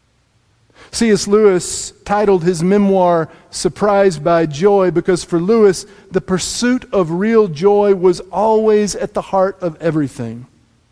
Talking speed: 125 wpm